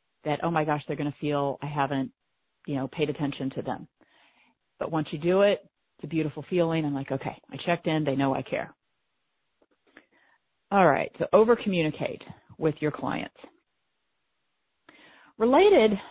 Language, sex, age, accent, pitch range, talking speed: English, female, 40-59, American, 160-225 Hz, 160 wpm